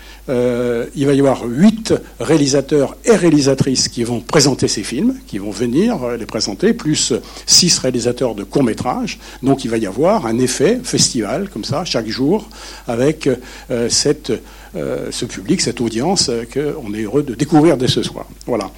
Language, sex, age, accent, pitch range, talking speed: French, male, 60-79, French, 120-155 Hz, 175 wpm